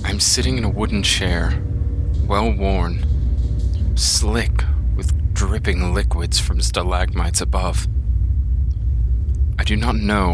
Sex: male